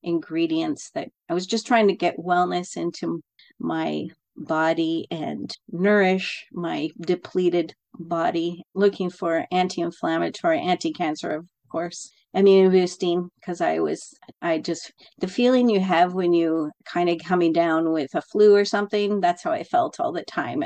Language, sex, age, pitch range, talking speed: English, female, 40-59, 170-205 Hz, 150 wpm